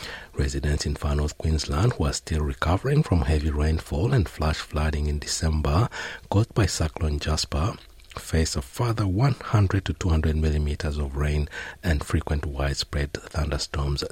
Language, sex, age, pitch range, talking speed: English, male, 60-79, 75-120 Hz, 145 wpm